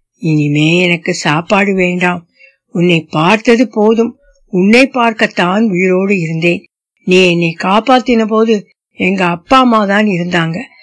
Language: Tamil